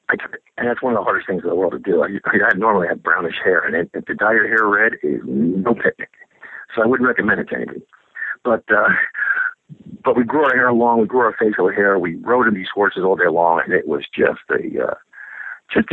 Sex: male